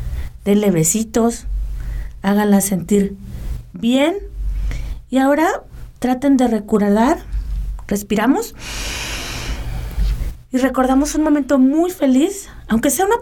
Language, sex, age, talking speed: English, female, 30-49, 90 wpm